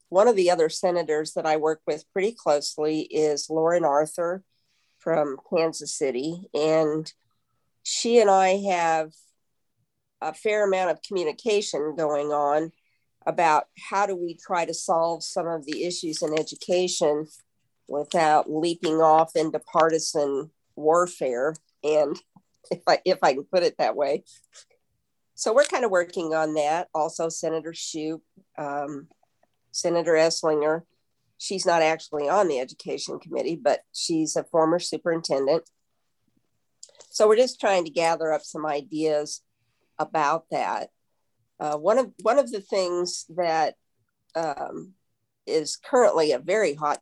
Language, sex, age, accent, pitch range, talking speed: English, female, 50-69, American, 150-175 Hz, 140 wpm